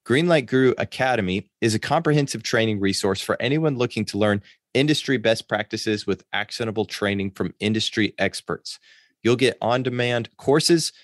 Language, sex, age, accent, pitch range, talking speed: English, male, 30-49, American, 95-115 Hz, 140 wpm